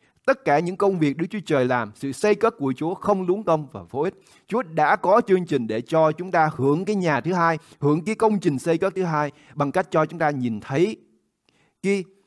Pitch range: 125-185 Hz